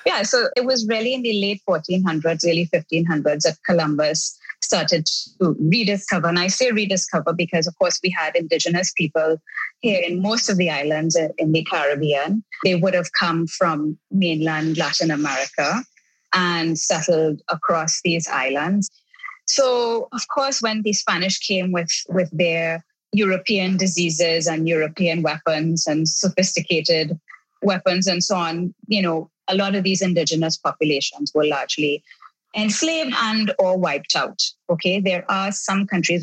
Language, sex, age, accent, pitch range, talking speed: English, female, 20-39, Indian, 165-200 Hz, 150 wpm